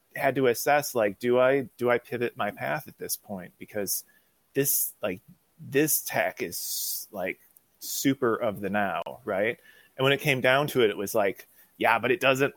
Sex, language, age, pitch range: male, English, 30-49, 105-135 Hz